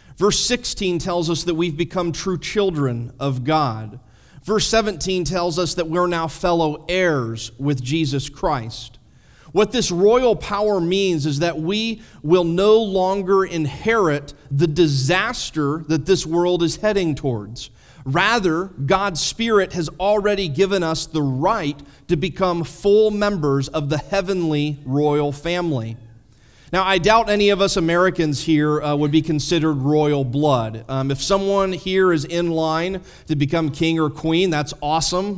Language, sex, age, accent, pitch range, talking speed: English, male, 30-49, American, 145-190 Hz, 150 wpm